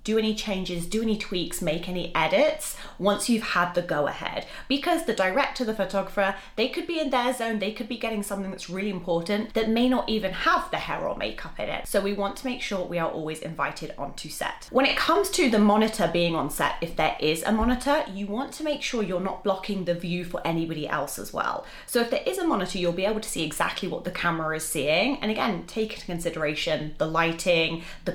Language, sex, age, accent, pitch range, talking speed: English, female, 30-49, British, 175-230 Hz, 235 wpm